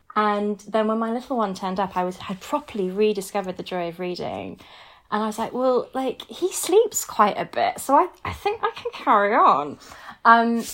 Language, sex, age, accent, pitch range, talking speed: English, female, 20-39, British, 175-225 Hz, 205 wpm